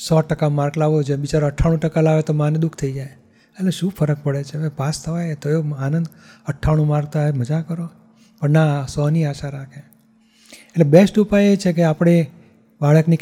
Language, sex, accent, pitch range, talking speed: Gujarati, male, native, 150-185 Hz, 195 wpm